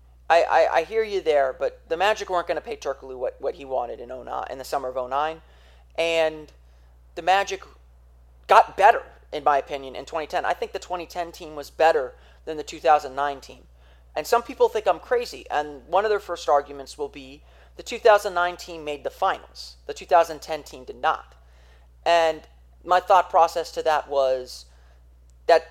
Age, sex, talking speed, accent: 30-49, male, 180 wpm, American